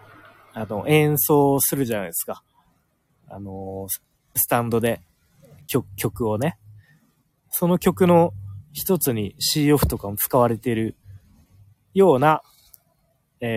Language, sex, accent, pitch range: Japanese, male, native, 110-160 Hz